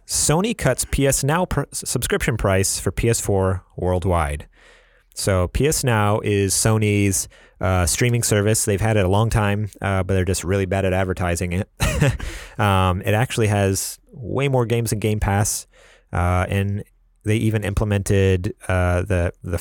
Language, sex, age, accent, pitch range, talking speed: English, male, 30-49, American, 90-115 Hz, 155 wpm